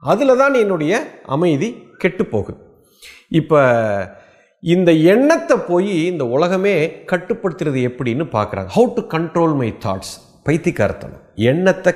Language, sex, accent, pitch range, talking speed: Tamil, male, native, 120-195 Hz, 105 wpm